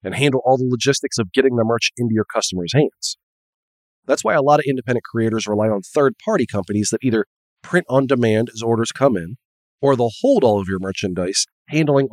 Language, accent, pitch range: English, American, 105-135 Hz